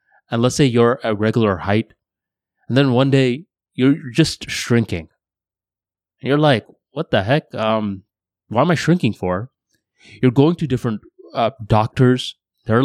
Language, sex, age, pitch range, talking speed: English, male, 20-39, 100-125 Hz, 150 wpm